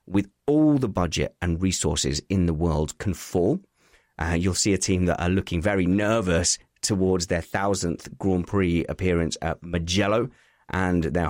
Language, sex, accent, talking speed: English, male, British, 165 wpm